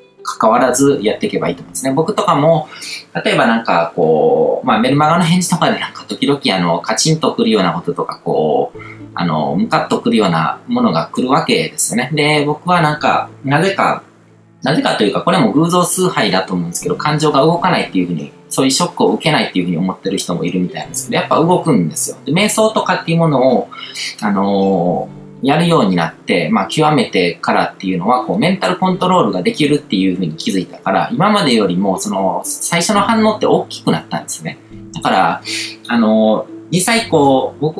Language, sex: Japanese, male